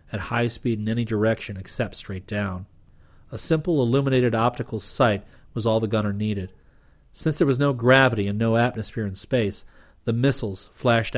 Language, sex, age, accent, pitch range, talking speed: English, male, 40-59, American, 100-125 Hz, 170 wpm